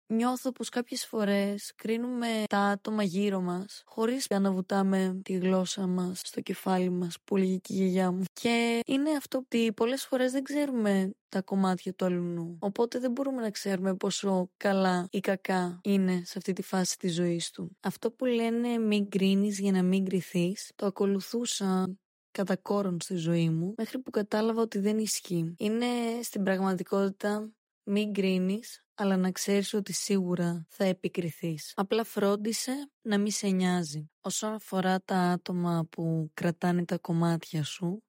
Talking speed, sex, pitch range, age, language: 155 wpm, female, 180-215 Hz, 20-39, Greek